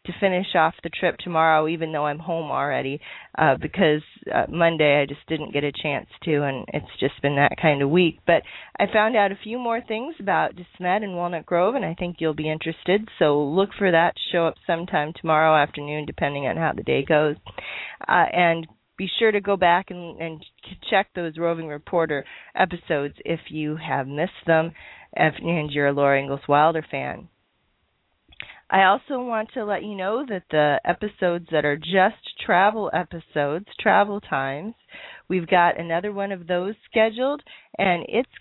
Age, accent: 40-59, American